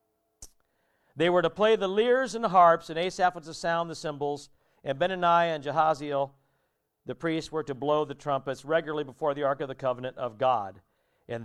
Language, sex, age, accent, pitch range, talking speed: English, male, 50-69, American, 110-160 Hz, 195 wpm